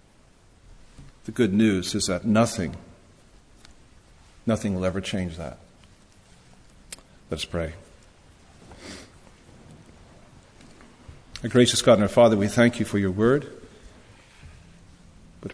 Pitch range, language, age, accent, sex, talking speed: 95-115 Hz, English, 50-69, American, male, 100 wpm